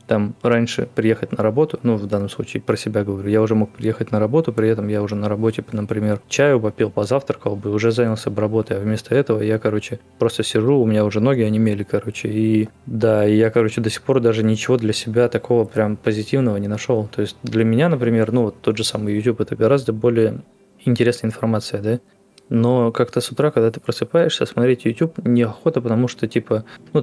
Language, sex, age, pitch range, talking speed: Russian, male, 20-39, 105-120 Hz, 210 wpm